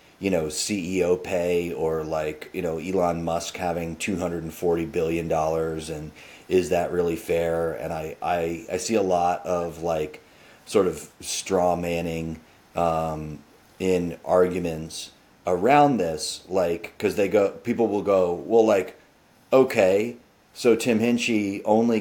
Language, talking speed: English, 135 wpm